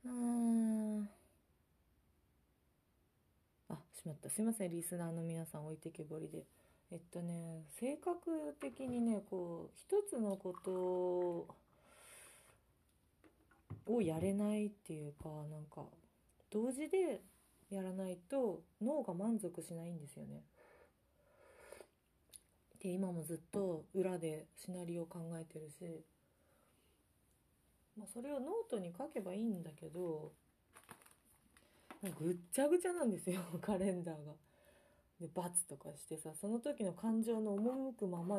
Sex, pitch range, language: female, 155-215 Hz, Japanese